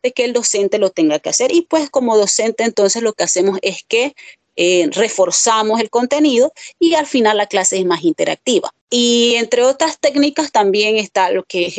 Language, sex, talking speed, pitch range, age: Spanish, female, 195 wpm, 185-270 Hz, 30-49